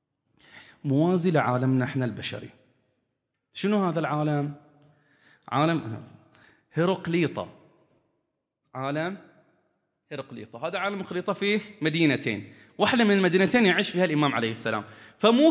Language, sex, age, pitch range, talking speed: Arabic, male, 20-39, 120-175 Hz, 95 wpm